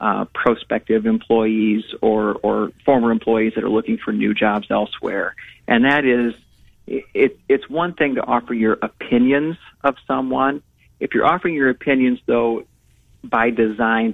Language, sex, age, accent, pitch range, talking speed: English, male, 40-59, American, 110-130 Hz, 155 wpm